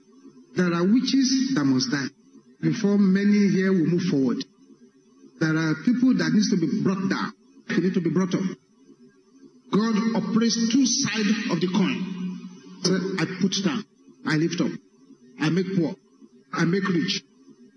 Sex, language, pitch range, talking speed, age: male, English, 180-230 Hz, 155 wpm, 50-69